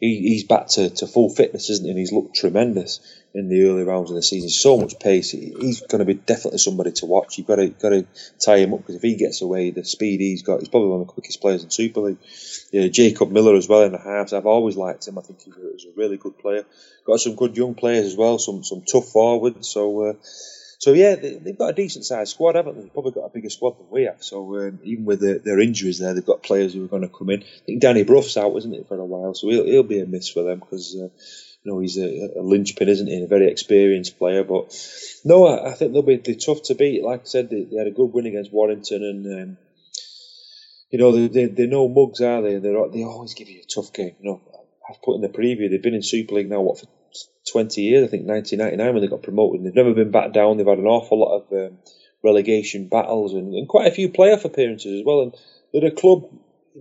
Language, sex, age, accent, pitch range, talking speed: English, male, 30-49, British, 100-130 Hz, 265 wpm